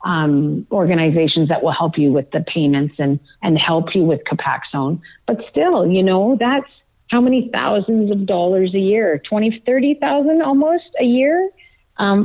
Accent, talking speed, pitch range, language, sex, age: American, 160 wpm, 170-230 Hz, English, female, 40-59